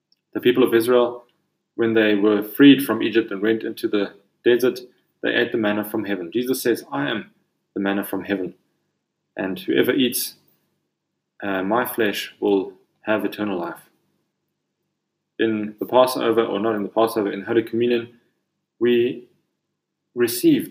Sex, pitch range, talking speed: male, 110-135 Hz, 150 wpm